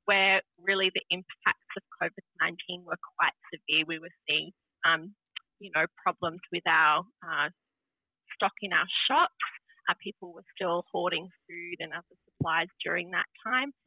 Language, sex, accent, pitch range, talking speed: English, female, Australian, 170-215 Hz, 150 wpm